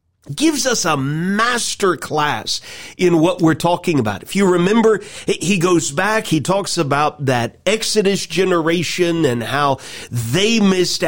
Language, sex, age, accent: English, male, 40-59, American